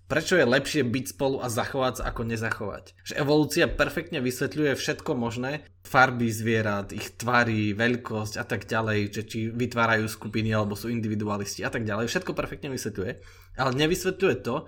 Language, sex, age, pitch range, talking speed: Slovak, male, 20-39, 110-135 Hz, 160 wpm